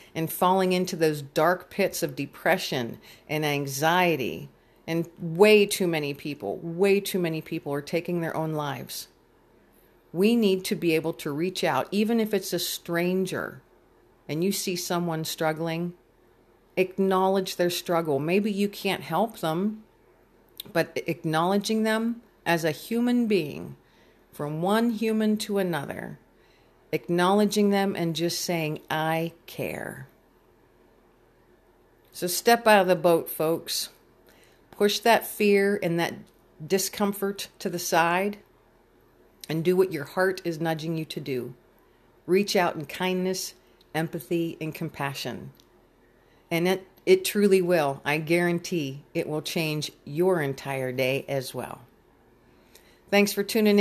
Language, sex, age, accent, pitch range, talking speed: English, female, 40-59, American, 155-195 Hz, 135 wpm